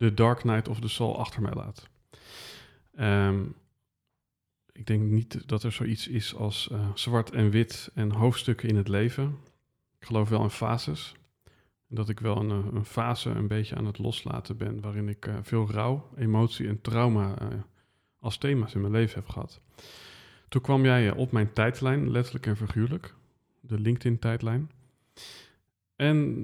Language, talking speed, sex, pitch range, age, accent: Dutch, 170 wpm, male, 105-125 Hz, 40-59, Dutch